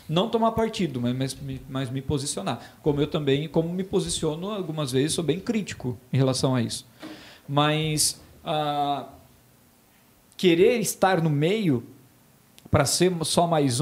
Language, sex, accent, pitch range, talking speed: Portuguese, male, Brazilian, 145-180 Hz, 145 wpm